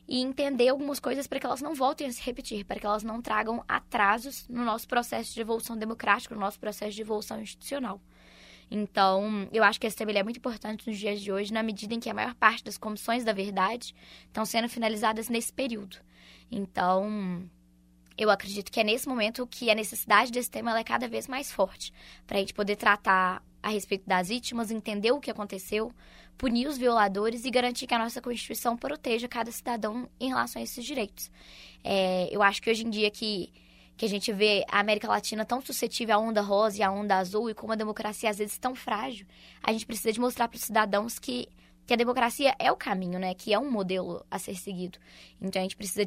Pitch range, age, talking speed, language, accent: 200-235 Hz, 10-29, 215 wpm, Portuguese, Brazilian